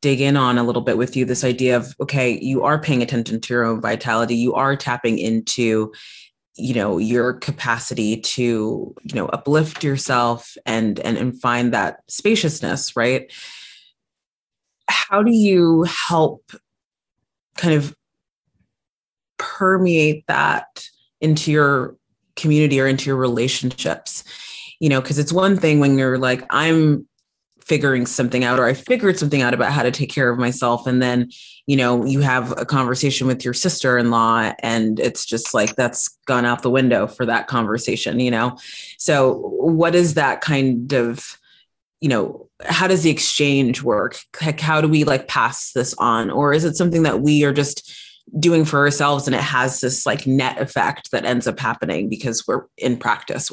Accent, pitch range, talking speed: American, 120-150 Hz, 170 wpm